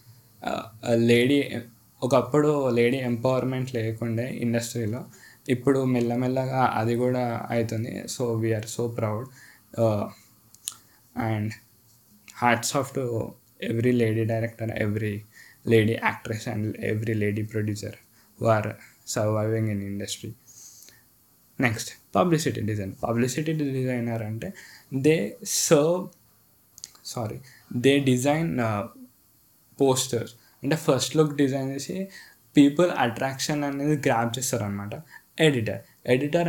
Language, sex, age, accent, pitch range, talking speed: Telugu, male, 20-39, native, 115-140 Hz, 95 wpm